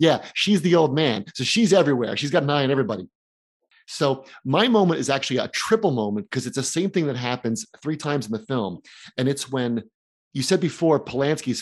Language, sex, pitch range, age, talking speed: English, male, 115-155 Hz, 30-49, 210 wpm